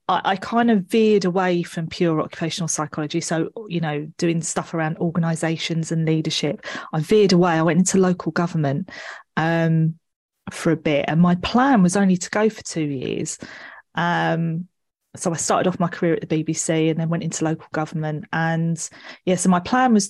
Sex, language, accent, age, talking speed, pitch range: female, English, British, 30-49, 190 wpm, 160-190 Hz